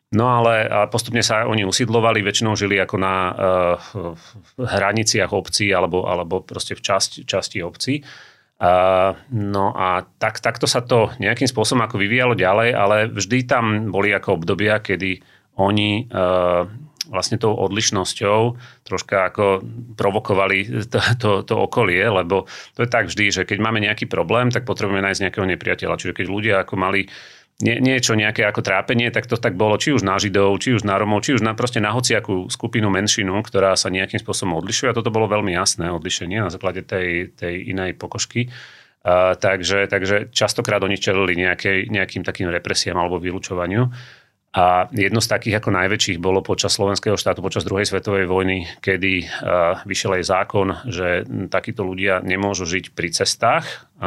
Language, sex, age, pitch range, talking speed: Slovak, male, 30-49, 95-115 Hz, 160 wpm